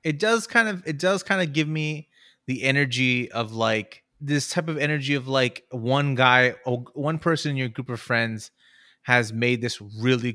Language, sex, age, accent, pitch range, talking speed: English, male, 30-49, American, 115-140 Hz, 190 wpm